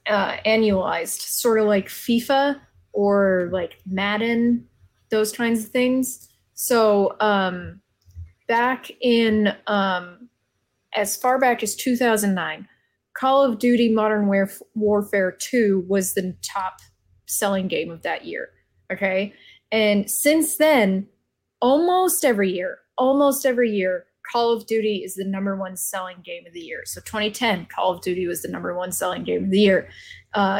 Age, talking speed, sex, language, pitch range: 20-39, 145 wpm, female, English, 195-235 Hz